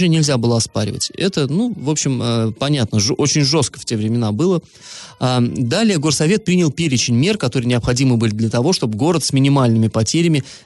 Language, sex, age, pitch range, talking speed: Russian, male, 20-39, 115-160 Hz, 165 wpm